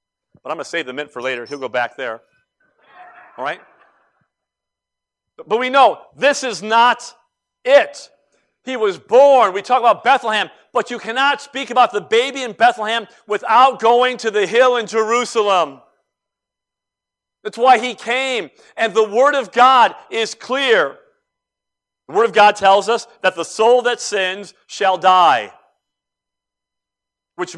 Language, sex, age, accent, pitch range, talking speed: English, male, 40-59, American, 185-255 Hz, 150 wpm